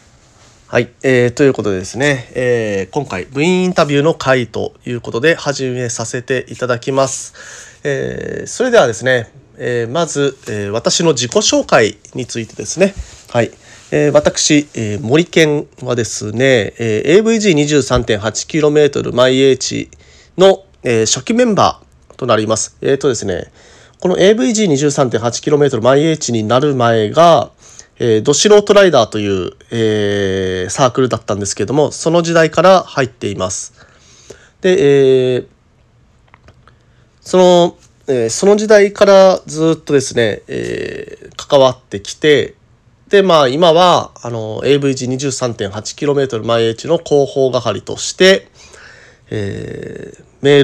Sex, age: male, 40-59